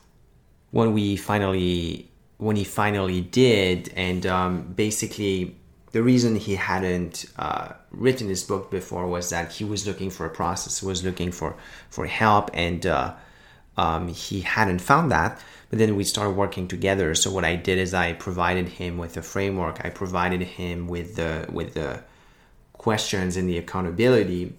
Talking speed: 165 wpm